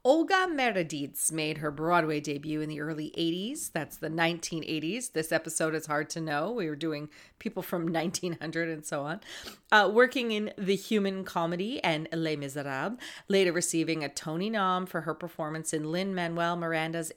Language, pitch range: English, 155-185 Hz